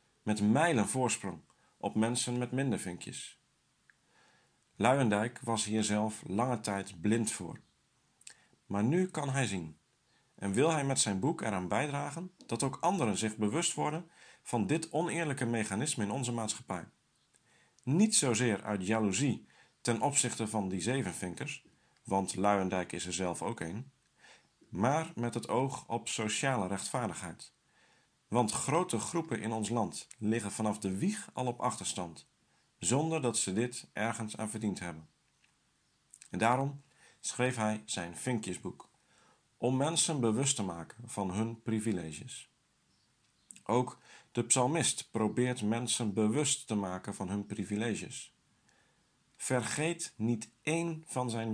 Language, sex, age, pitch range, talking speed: Dutch, male, 50-69, 105-130 Hz, 135 wpm